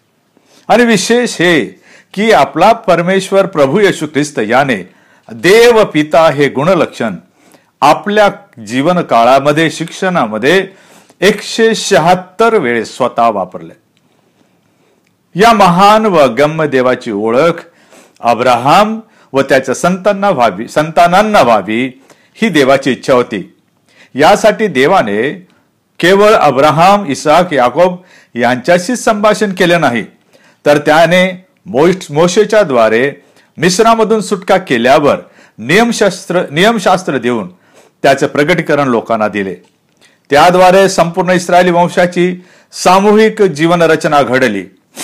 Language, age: Marathi, 50-69